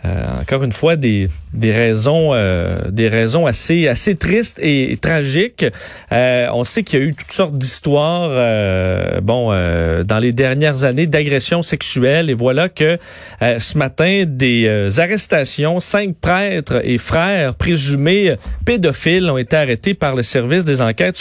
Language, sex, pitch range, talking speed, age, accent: French, male, 120-180 Hz, 165 wpm, 40-59, Canadian